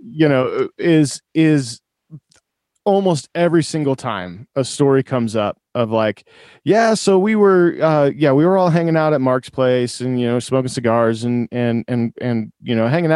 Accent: American